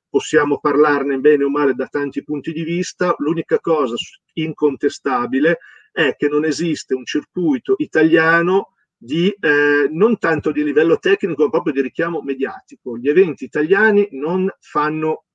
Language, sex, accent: Italian, male, native